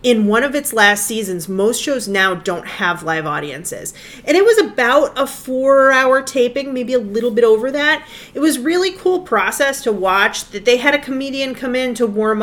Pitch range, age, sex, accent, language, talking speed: 180-245 Hz, 30-49, female, American, English, 205 wpm